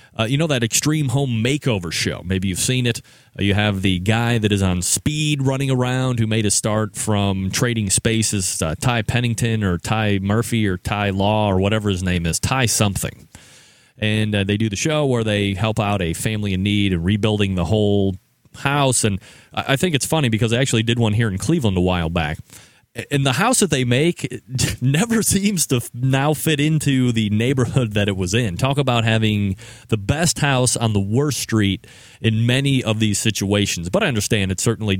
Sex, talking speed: male, 205 wpm